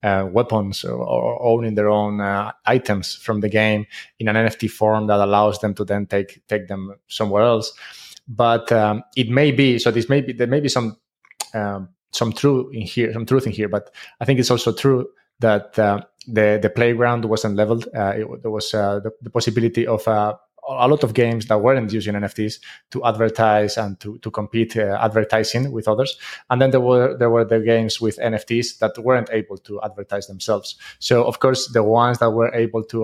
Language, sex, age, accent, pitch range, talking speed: English, male, 20-39, Spanish, 105-120 Hz, 210 wpm